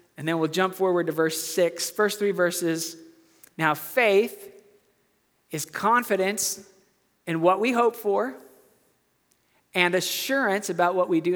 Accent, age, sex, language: American, 40-59, male, English